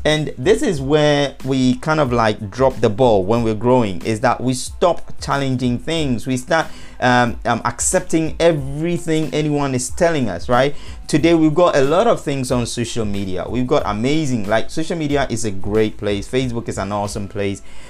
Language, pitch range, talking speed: English, 115-150 Hz, 190 wpm